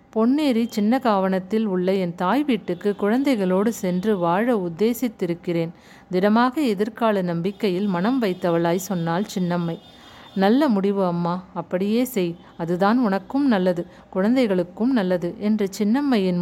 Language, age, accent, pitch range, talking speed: Tamil, 50-69, native, 180-230 Hz, 105 wpm